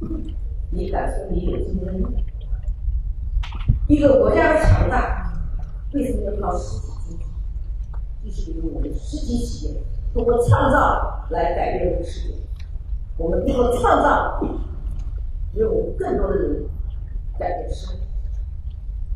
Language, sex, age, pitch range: Chinese, female, 50-69, 75-125 Hz